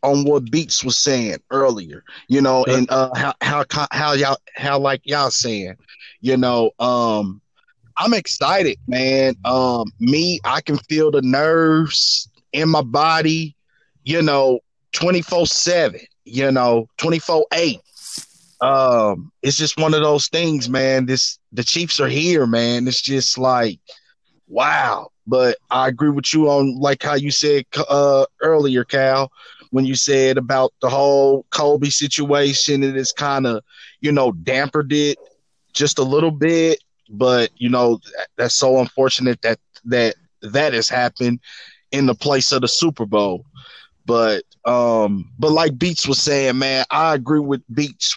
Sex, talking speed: male, 155 wpm